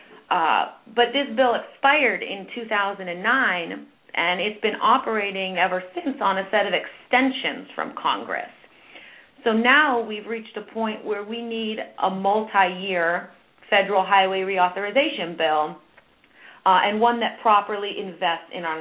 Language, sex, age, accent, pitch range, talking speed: English, female, 40-59, American, 175-220 Hz, 135 wpm